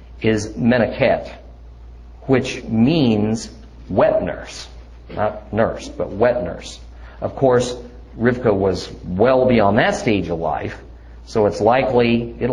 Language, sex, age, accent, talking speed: English, male, 50-69, American, 120 wpm